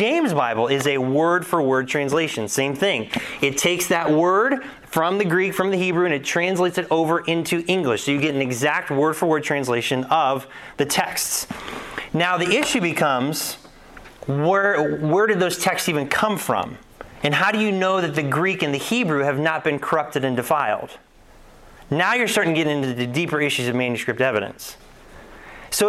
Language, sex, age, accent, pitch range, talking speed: English, male, 30-49, American, 140-180 Hz, 180 wpm